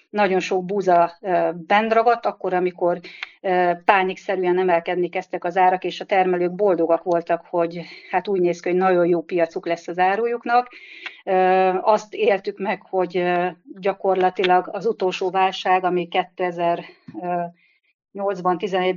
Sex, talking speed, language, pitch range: female, 125 wpm, Hungarian, 175-195 Hz